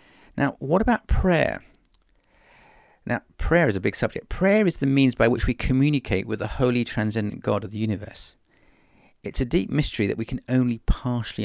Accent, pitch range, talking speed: British, 105-140 Hz, 185 wpm